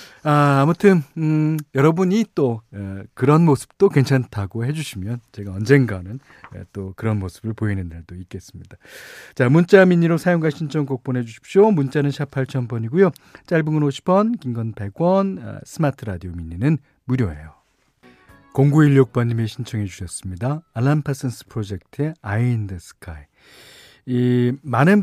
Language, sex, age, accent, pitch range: Korean, male, 40-59, native, 110-155 Hz